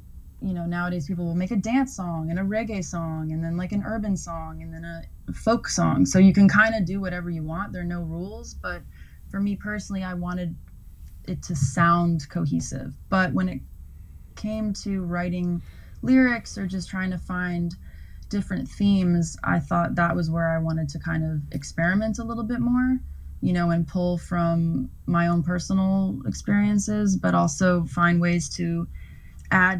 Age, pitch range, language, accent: 20-39, 160-190 Hz, English, American